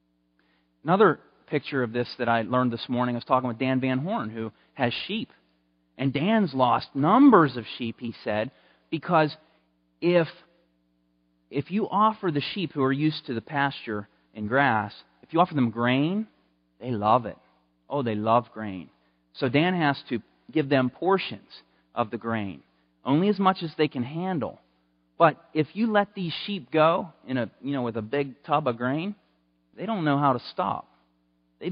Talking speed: 180 wpm